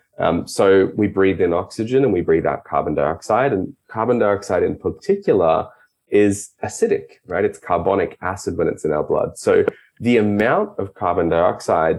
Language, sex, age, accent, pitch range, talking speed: English, male, 20-39, Australian, 95-125 Hz, 170 wpm